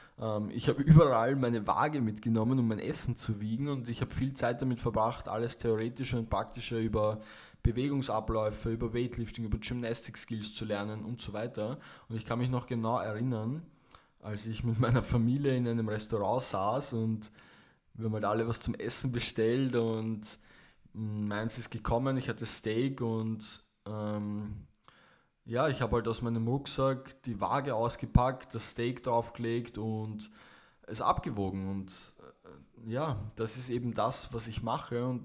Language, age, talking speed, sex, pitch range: German, 20-39, 160 wpm, male, 110-125 Hz